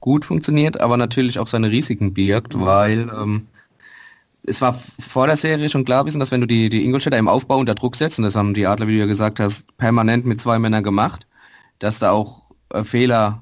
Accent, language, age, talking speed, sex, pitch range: German, German, 20-39, 210 wpm, male, 105-125 Hz